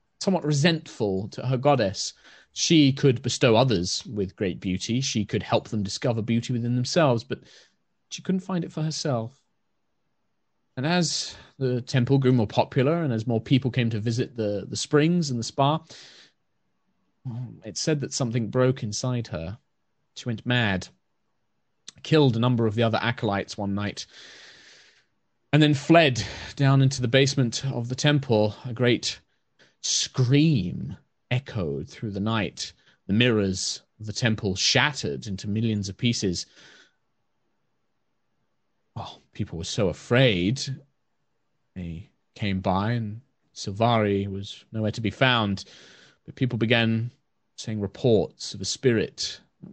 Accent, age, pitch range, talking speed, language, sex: British, 30-49, 105-135 Hz, 140 wpm, English, male